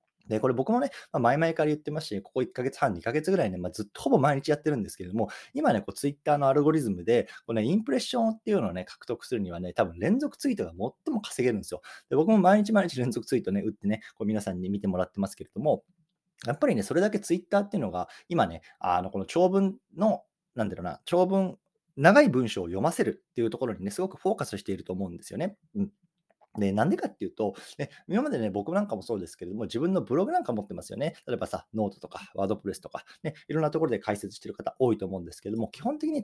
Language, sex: Japanese, male